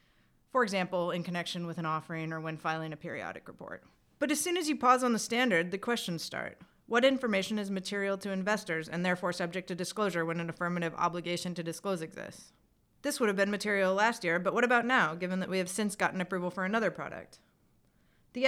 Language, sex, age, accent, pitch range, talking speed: English, female, 30-49, American, 180-230 Hz, 210 wpm